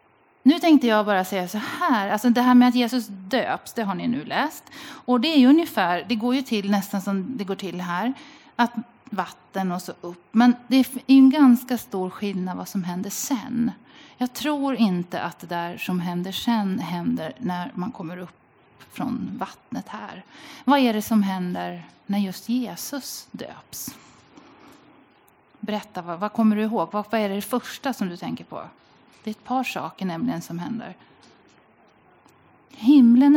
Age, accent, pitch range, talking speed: 30-49, native, 195-255 Hz, 175 wpm